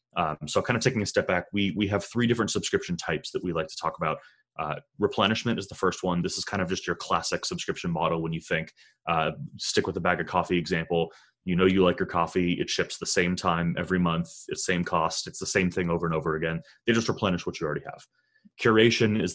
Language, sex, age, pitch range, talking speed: English, male, 30-49, 85-110 Hz, 250 wpm